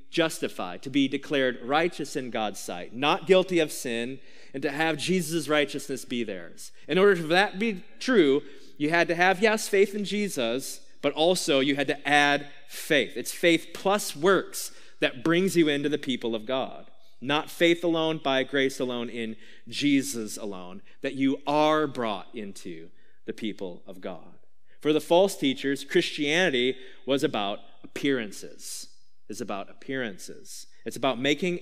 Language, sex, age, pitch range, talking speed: English, male, 30-49, 130-170 Hz, 160 wpm